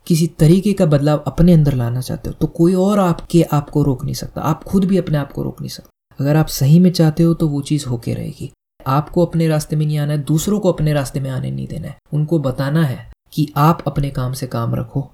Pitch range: 135-160 Hz